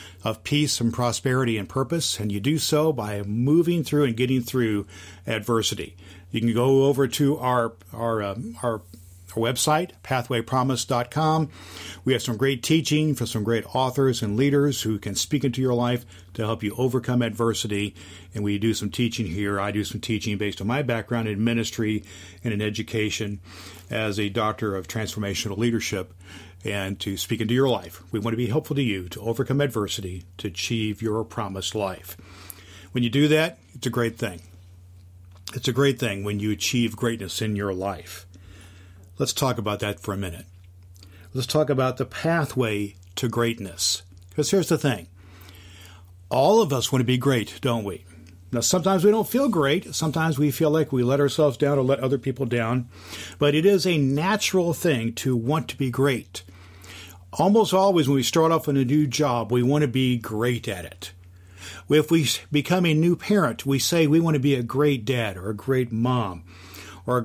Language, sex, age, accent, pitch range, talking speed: English, male, 40-59, American, 95-135 Hz, 190 wpm